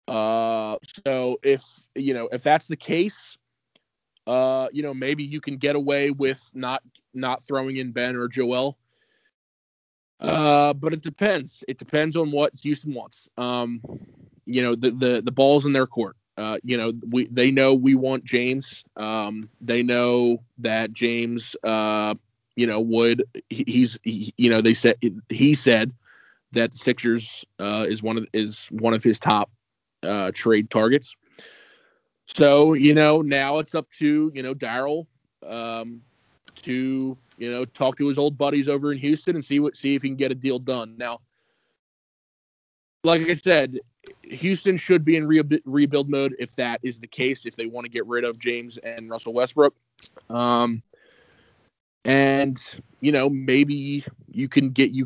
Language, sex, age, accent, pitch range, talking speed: English, male, 20-39, American, 120-145 Hz, 165 wpm